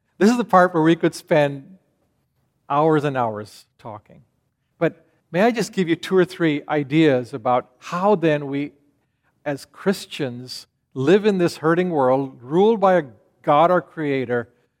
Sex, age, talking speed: male, 50-69, 160 wpm